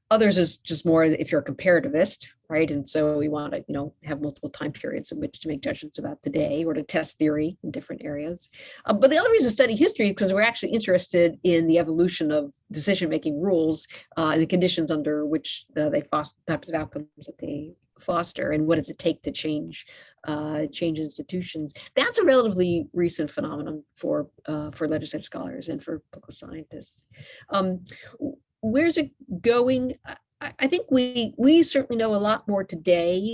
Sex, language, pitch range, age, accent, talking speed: female, English, 155-225 Hz, 50-69, American, 185 wpm